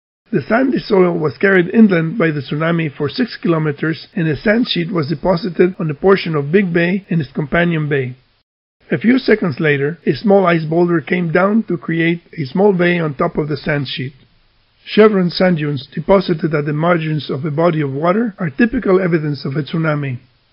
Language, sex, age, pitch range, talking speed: English, male, 50-69, 155-195 Hz, 195 wpm